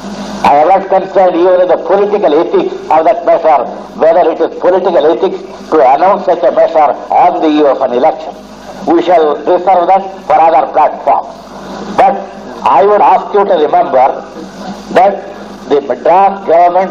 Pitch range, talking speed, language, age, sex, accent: 170-210 Hz, 165 wpm, Tamil, 60-79, male, native